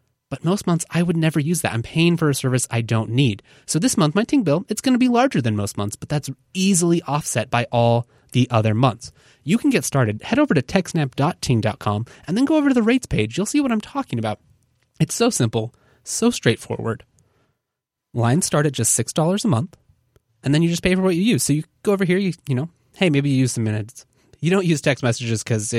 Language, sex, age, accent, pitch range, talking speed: English, male, 20-39, American, 115-160 Hz, 235 wpm